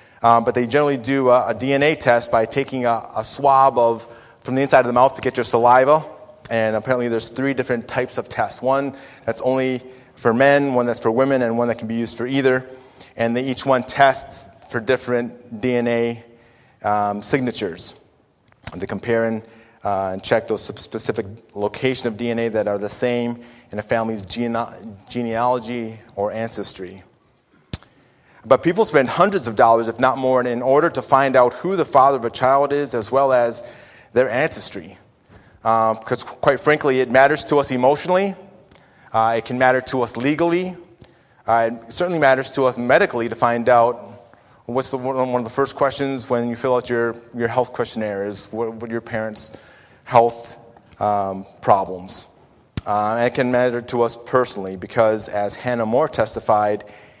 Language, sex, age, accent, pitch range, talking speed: English, male, 30-49, American, 115-130 Hz, 175 wpm